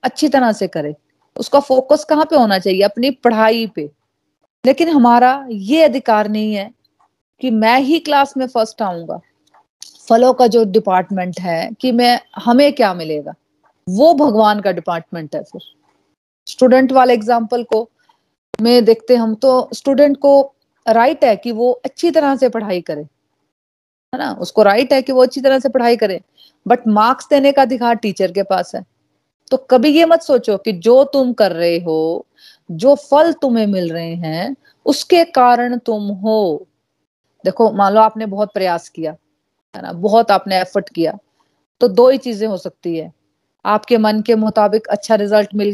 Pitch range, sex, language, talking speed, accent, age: 190-260 Hz, female, Hindi, 170 wpm, native, 30-49